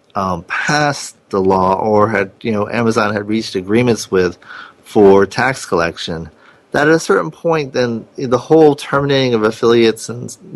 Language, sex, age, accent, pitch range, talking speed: English, male, 30-49, American, 105-130 Hz, 160 wpm